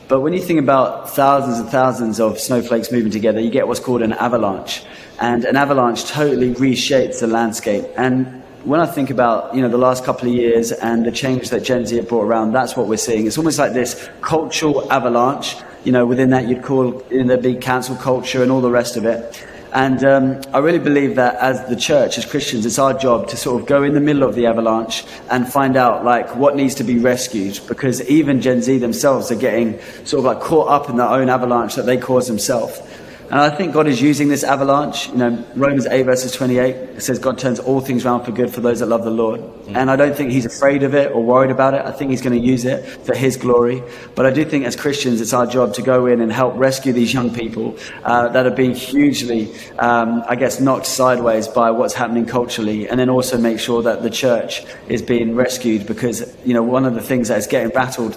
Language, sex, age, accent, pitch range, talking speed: English, male, 20-39, British, 120-130 Hz, 240 wpm